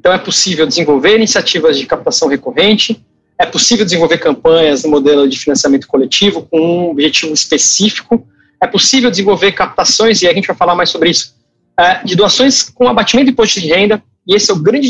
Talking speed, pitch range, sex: 185 wpm, 170-245 Hz, male